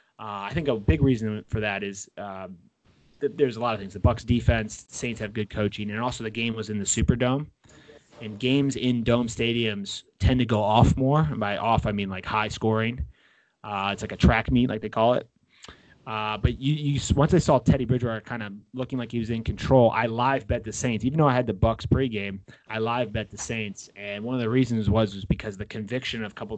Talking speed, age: 240 wpm, 30-49